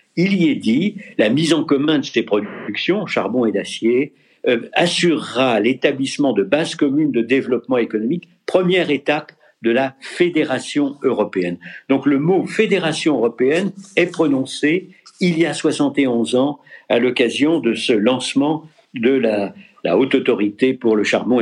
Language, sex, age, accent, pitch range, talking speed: French, male, 60-79, French, 140-230 Hz, 155 wpm